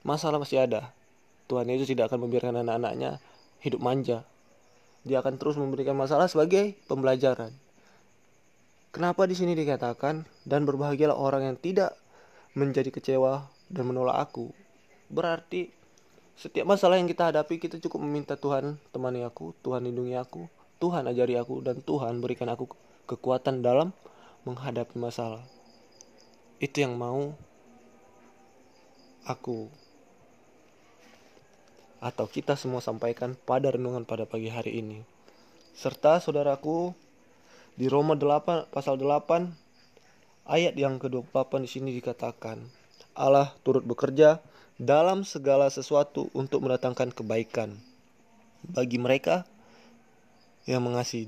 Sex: male